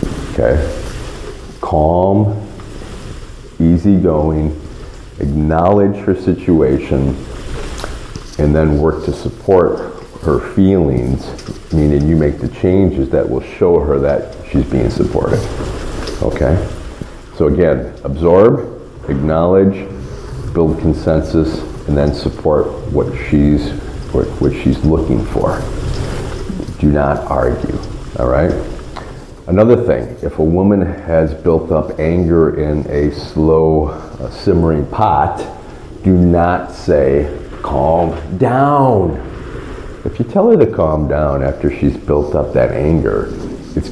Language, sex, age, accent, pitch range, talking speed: English, male, 40-59, American, 75-90 Hz, 110 wpm